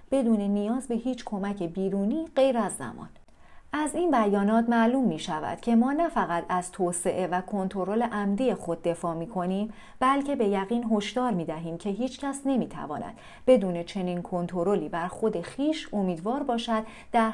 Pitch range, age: 185-250 Hz, 40-59